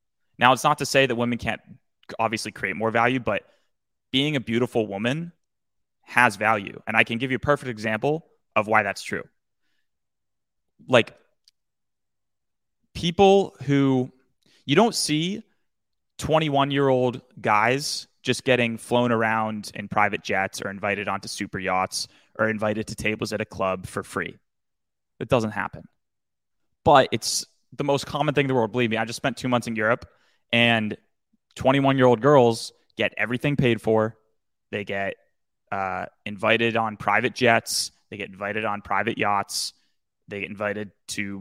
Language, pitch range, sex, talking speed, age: English, 110-135 Hz, male, 150 wpm, 20-39